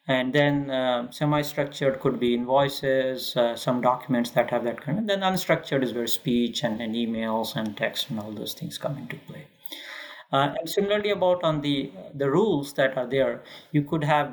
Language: English